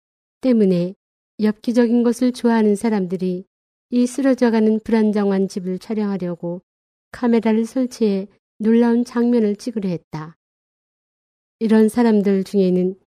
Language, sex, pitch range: Korean, female, 185-230 Hz